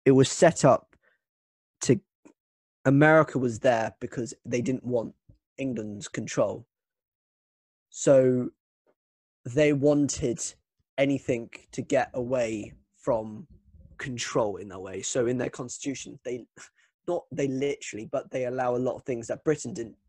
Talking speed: 130 wpm